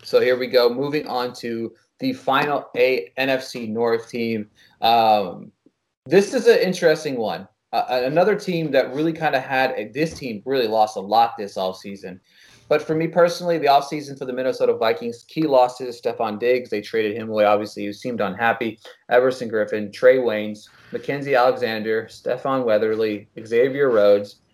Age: 20-39